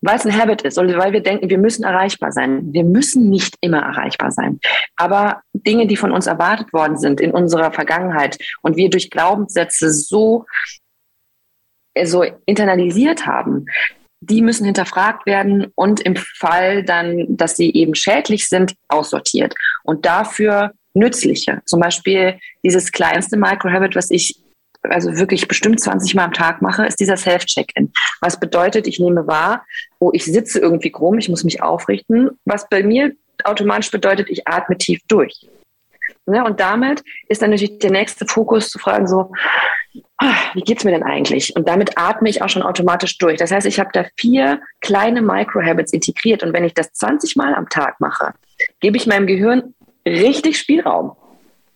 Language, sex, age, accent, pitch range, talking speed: German, female, 30-49, German, 175-220 Hz, 170 wpm